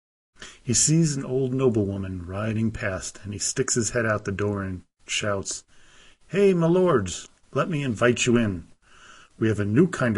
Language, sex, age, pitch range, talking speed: English, male, 40-59, 100-130 Hz, 175 wpm